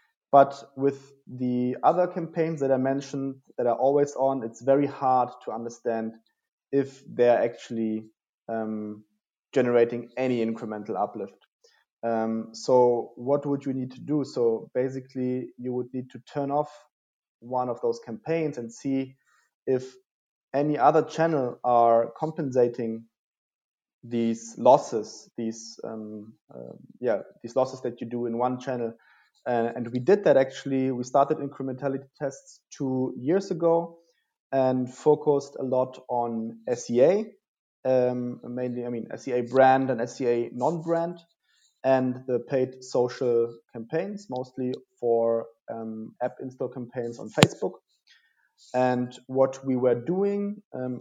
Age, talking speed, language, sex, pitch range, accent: 30-49, 135 wpm, English, male, 120-140 Hz, German